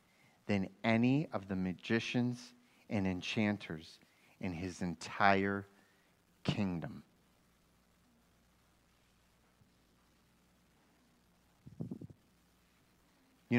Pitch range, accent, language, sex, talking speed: 95-130 Hz, American, English, male, 55 wpm